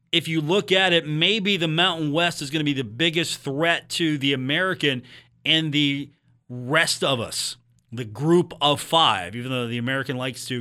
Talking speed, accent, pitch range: 190 wpm, American, 130-160 Hz